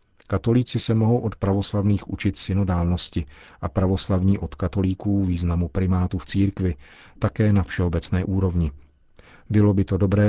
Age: 40-59